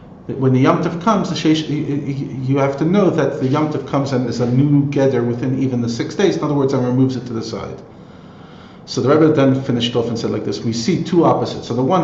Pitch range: 120-140 Hz